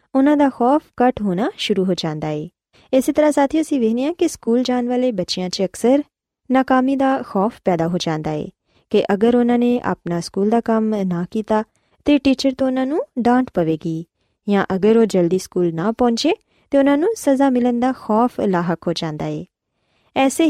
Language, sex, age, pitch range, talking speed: Punjabi, female, 20-39, 185-260 Hz, 185 wpm